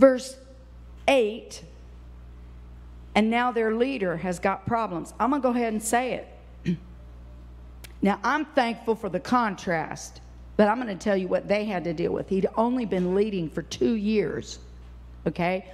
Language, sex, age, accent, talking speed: English, female, 50-69, American, 165 wpm